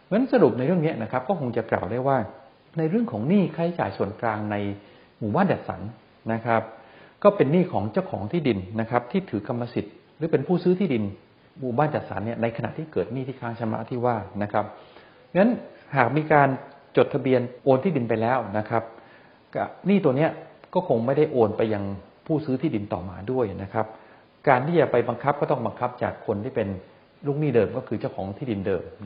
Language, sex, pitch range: English, male, 105-140 Hz